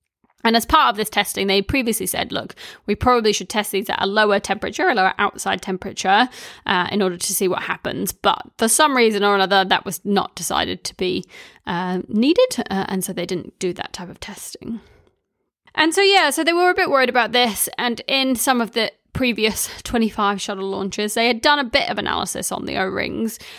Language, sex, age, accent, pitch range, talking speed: English, female, 20-39, British, 195-245 Hz, 215 wpm